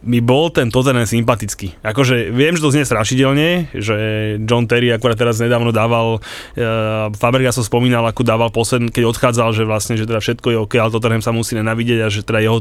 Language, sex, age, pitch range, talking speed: Slovak, male, 20-39, 115-130 Hz, 205 wpm